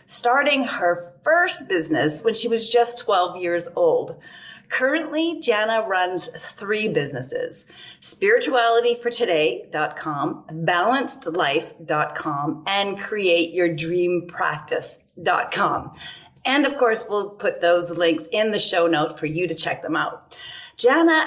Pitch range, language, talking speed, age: 180-280 Hz, English, 105 wpm, 30-49